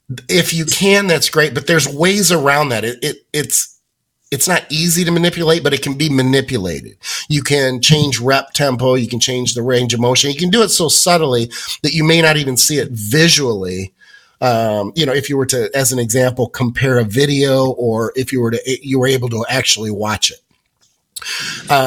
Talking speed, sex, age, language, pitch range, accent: 205 wpm, male, 30-49, English, 125-155 Hz, American